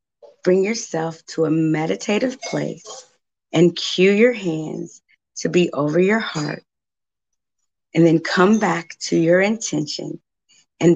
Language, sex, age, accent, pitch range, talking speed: English, female, 30-49, American, 160-195 Hz, 125 wpm